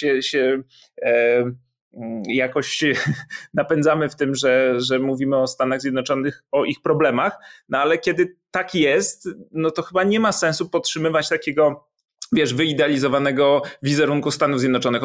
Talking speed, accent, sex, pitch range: 125 wpm, native, male, 135-170 Hz